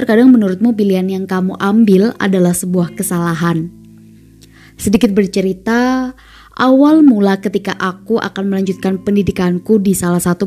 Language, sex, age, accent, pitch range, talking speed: Indonesian, female, 20-39, native, 185-230 Hz, 120 wpm